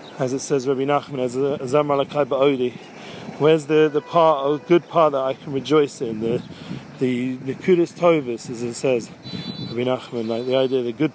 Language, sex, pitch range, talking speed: English, male, 130-155 Hz, 195 wpm